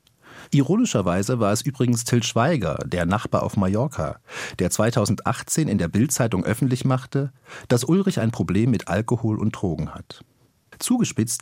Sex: male